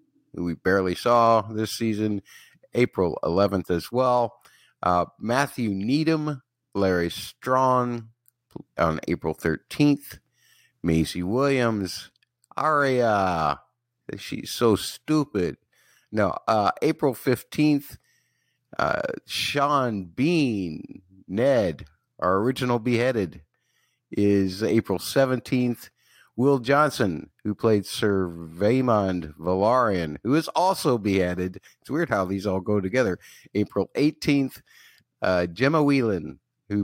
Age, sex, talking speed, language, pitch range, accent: 50-69, male, 100 wpm, English, 95-130 Hz, American